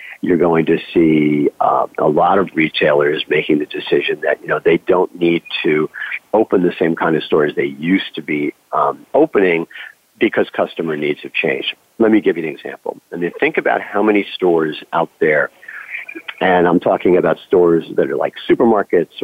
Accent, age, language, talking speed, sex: American, 50-69, English, 185 wpm, male